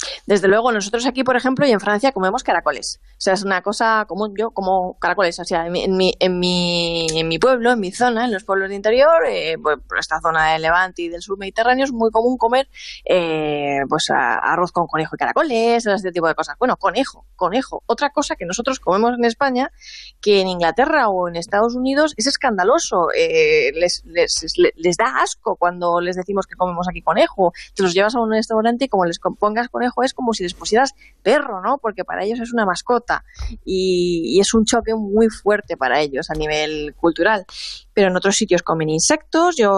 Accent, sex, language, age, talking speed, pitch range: Spanish, female, Spanish, 20-39, 210 wpm, 170-245 Hz